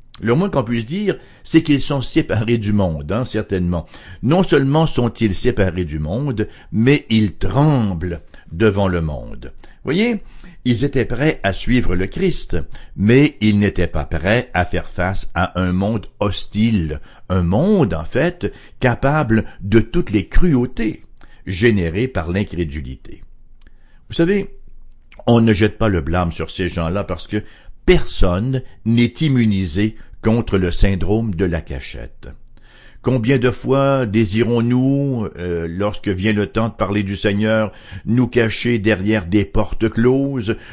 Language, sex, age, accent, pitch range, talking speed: English, male, 60-79, French, 95-125 Hz, 145 wpm